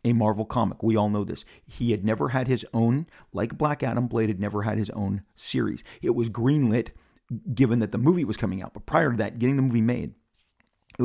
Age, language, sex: 40-59, English, male